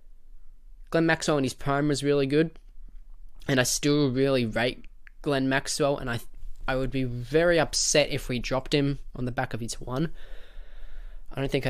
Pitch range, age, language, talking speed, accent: 115-140 Hz, 10-29, English, 180 wpm, Australian